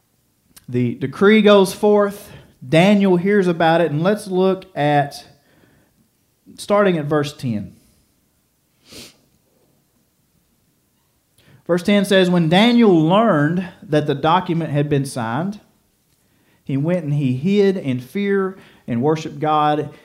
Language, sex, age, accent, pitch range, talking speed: English, male, 40-59, American, 135-190 Hz, 115 wpm